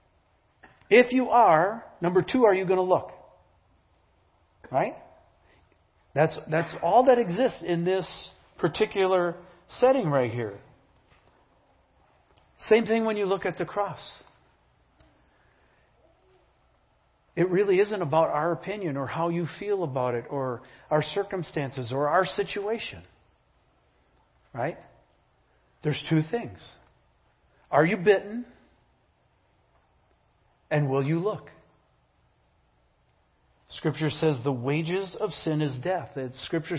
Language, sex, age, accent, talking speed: English, male, 50-69, American, 110 wpm